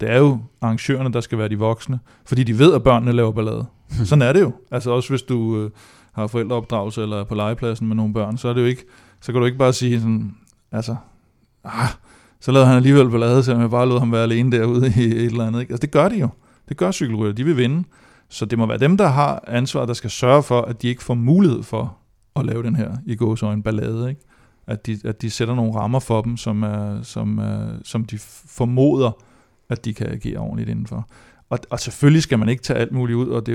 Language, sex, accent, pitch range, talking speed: Danish, male, native, 115-125 Hz, 245 wpm